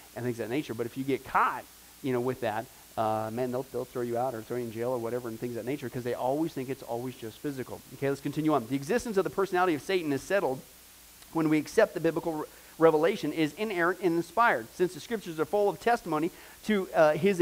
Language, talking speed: English, 255 wpm